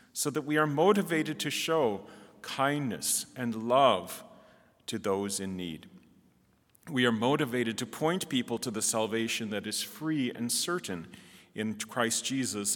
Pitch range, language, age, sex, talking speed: 115-175 Hz, English, 40-59, male, 145 wpm